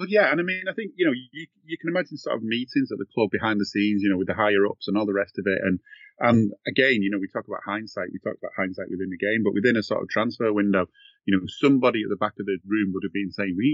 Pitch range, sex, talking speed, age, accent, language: 95-115 Hz, male, 305 wpm, 30-49, British, English